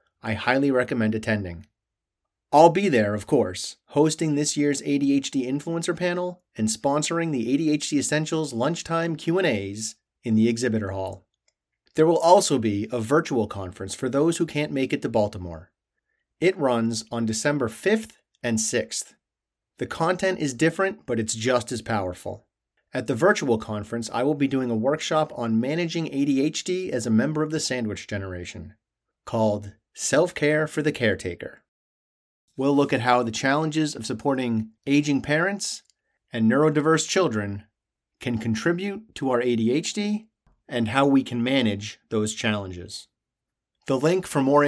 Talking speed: 150 wpm